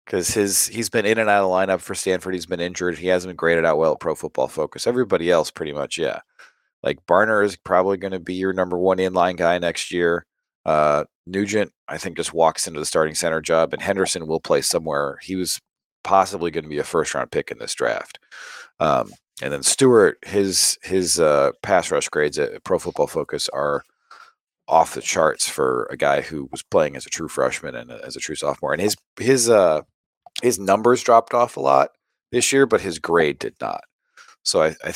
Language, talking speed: English, 215 wpm